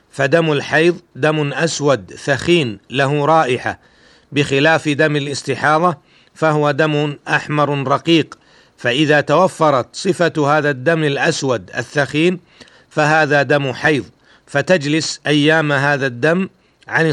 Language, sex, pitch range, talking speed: Arabic, male, 140-160 Hz, 100 wpm